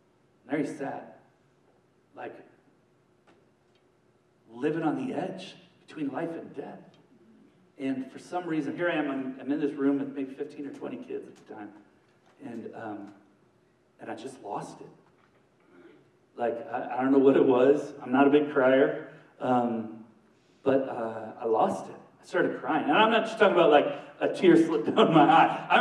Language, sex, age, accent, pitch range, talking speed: English, male, 40-59, American, 145-215 Hz, 180 wpm